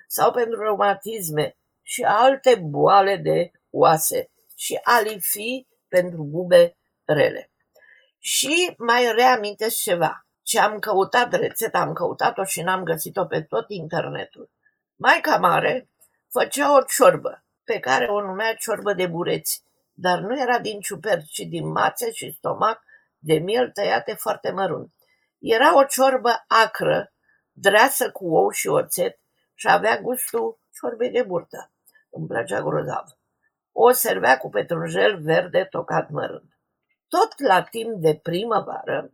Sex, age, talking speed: female, 50-69, 135 wpm